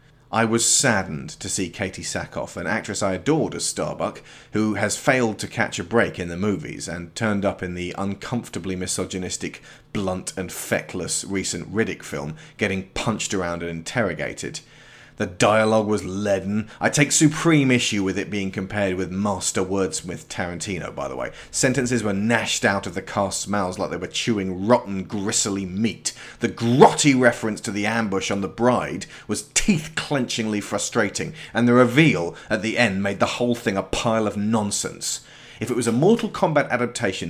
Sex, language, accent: male, English, British